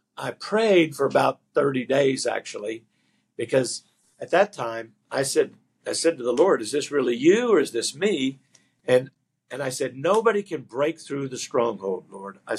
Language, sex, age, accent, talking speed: English, male, 50-69, American, 180 wpm